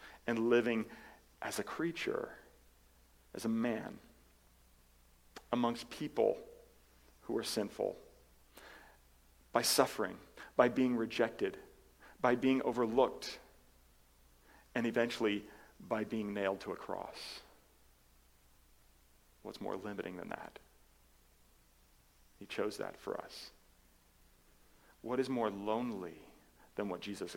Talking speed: 100 wpm